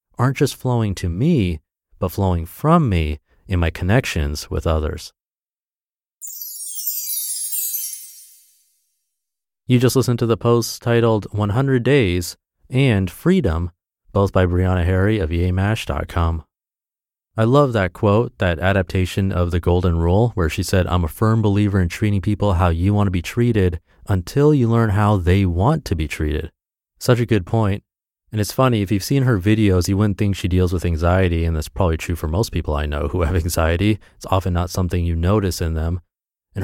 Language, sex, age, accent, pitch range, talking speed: English, male, 30-49, American, 85-110 Hz, 175 wpm